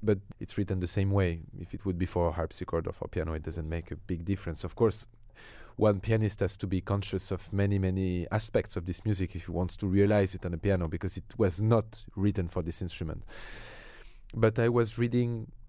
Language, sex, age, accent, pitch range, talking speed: English, male, 30-49, French, 95-115 Hz, 225 wpm